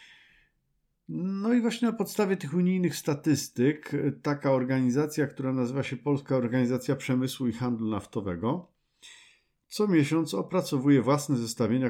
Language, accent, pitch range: Polish, native, 115-150 Hz